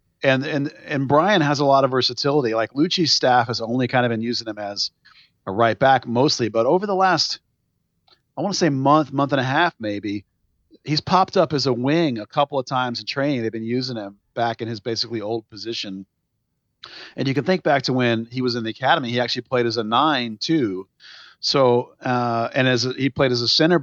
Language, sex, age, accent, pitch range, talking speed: English, male, 40-59, American, 115-140 Hz, 225 wpm